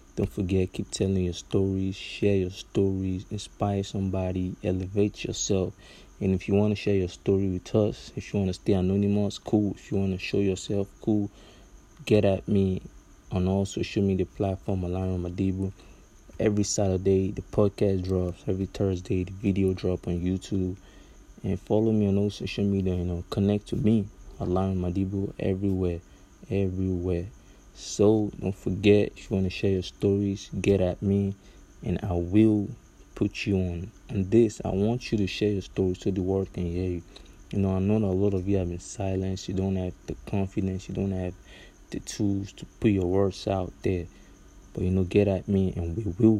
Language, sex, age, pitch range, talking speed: English, male, 20-39, 95-100 Hz, 185 wpm